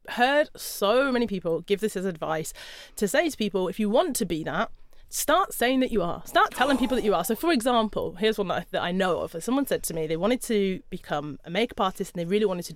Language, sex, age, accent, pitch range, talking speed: English, female, 30-49, British, 185-245 Hz, 255 wpm